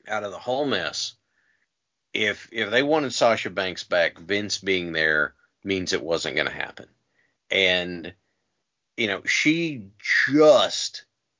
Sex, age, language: male, 40-59, English